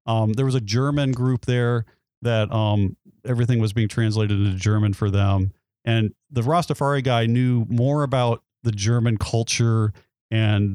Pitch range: 105-130 Hz